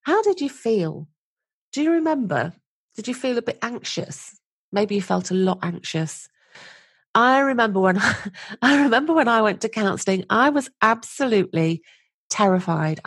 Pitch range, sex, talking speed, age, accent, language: 175-240 Hz, female, 150 wpm, 40-59, British, English